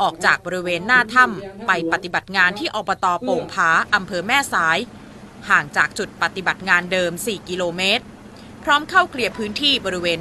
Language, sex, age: Thai, female, 20-39